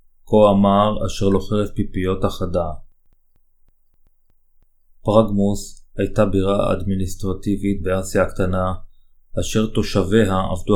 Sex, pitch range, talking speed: male, 90-100 Hz, 90 wpm